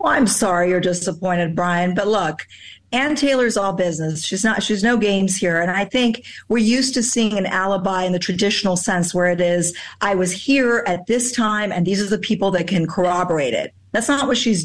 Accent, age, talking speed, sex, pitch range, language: American, 50-69, 215 wpm, female, 190-240 Hz, English